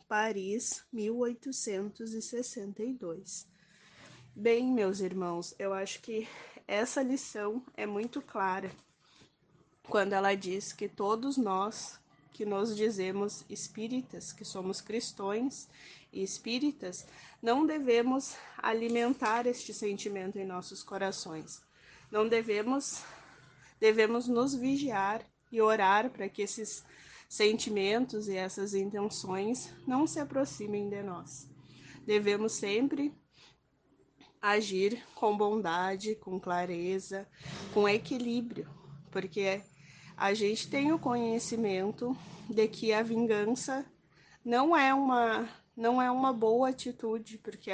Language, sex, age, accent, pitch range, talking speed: Portuguese, female, 20-39, Brazilian, 195-240 Hz, 100 wpm